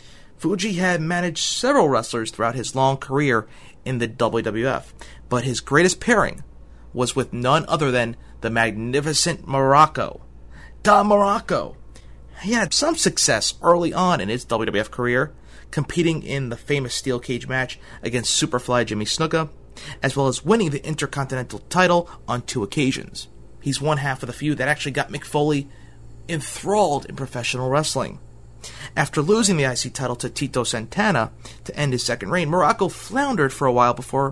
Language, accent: English, American